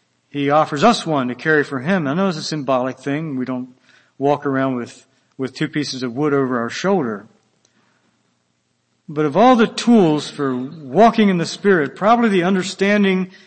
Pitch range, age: 130-180 Hz, 60-79